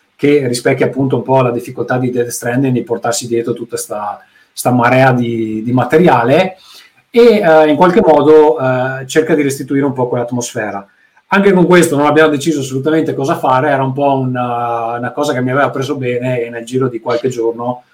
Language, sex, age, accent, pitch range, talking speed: Italian, male, 30-49, native, 120-155 Hz, 190 wpm